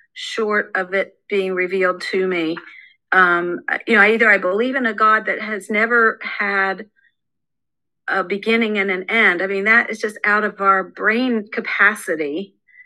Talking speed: 165 wpm